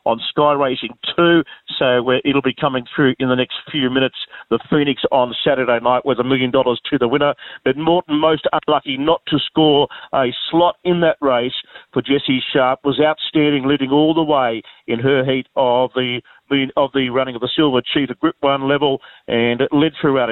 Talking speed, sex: 200 wpm, male